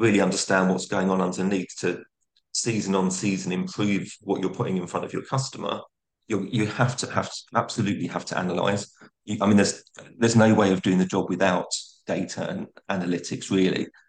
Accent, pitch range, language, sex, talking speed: British, 95-110 Hz, English, male, 190 wpm